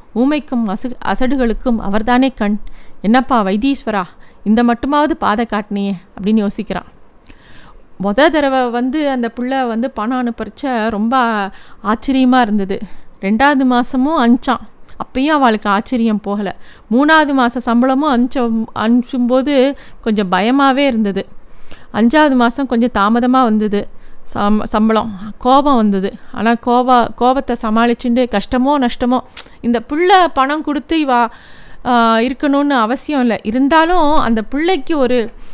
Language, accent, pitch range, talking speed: Tamil, native, 220-265 Hz, 110 wpm